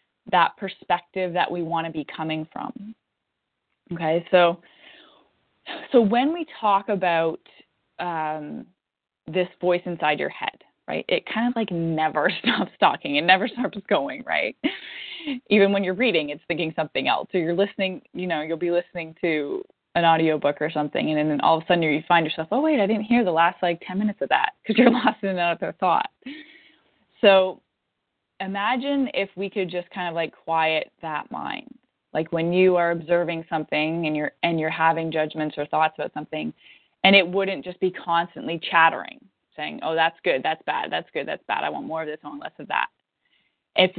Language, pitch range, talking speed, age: English, 160-205 Hz, 190 wpm, 20-39